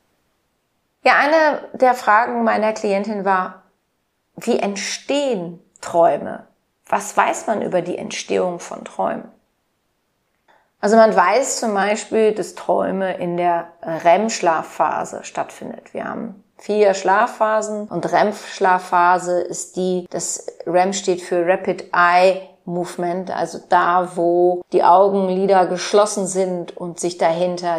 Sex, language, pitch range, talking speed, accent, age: female, German, 175-210 Hz, 115 wpm, German, 30-49